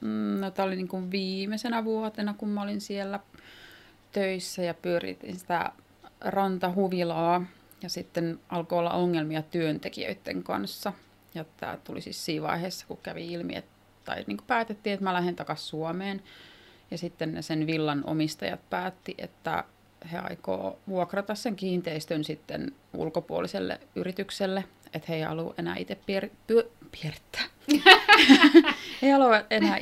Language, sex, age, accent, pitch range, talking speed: Finnish, female, 30-49, native, 155-200 Hz, 135 wpm